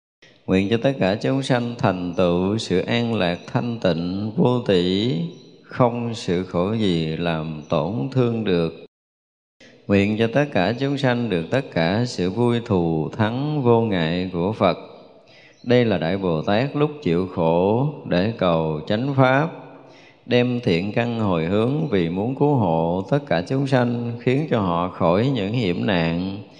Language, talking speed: Vietnamese, 160 wpm